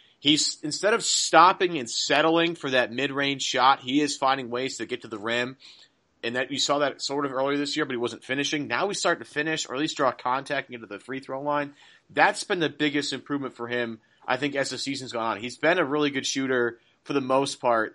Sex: male